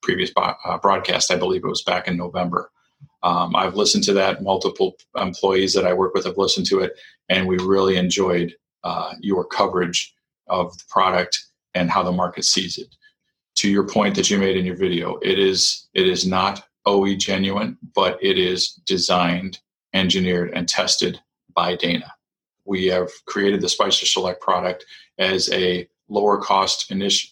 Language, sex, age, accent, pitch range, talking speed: English, male, 40-59, American, 90-100 Hz, 175 wpm